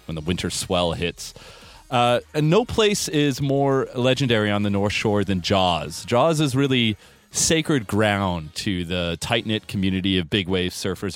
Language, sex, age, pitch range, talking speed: English, male, 30-49, 90-120 Hz, 165 wpm